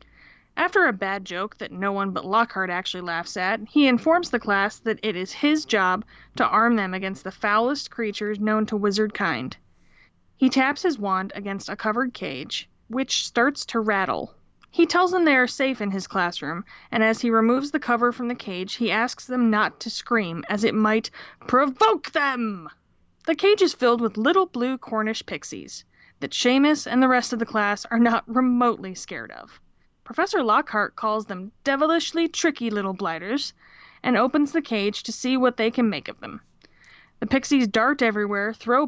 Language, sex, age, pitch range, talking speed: English, female, 20-39, 205-260 Hz, 185 wpm